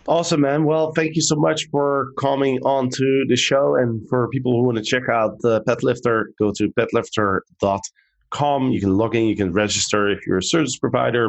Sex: male